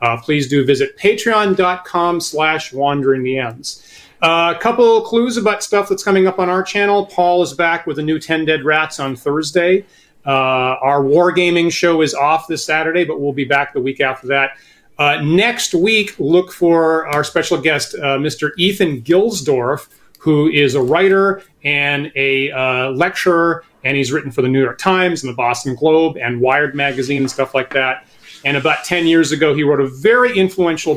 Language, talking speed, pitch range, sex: English, 180 wpm, 135-175 Hz, male